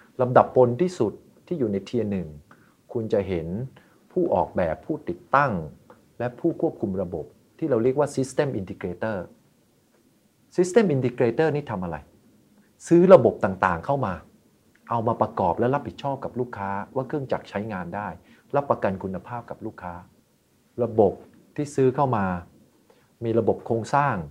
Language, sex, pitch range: English, male, 95-130 Hz